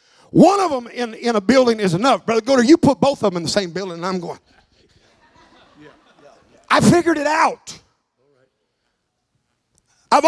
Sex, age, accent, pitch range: male, 50-69, American, 185-290 Hz